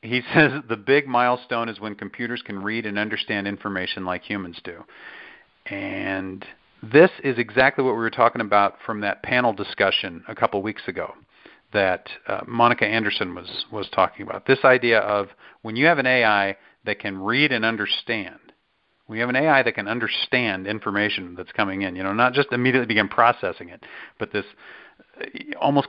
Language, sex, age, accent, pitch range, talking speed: English, male, 40-59, American, 105-130 Hz, 180 wpm